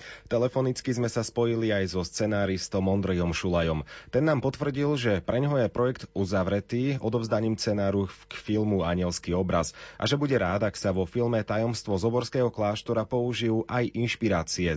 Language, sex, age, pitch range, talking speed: Slovak, male, 30-49, 95-120 Hz, 160 wpm